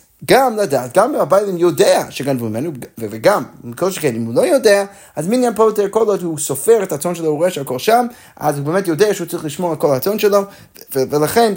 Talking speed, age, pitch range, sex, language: 230 wpm, 30-49, 130-195 Hz, male, Hebrew